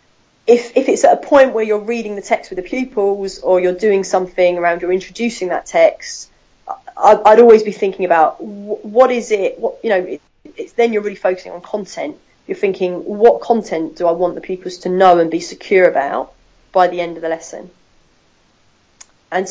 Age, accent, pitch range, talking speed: 30-49, British, 180-235 Hz, 205 wpm